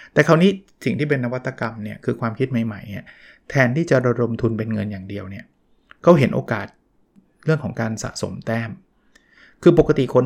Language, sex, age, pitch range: Thai, male, 20-39, 115-150 Hz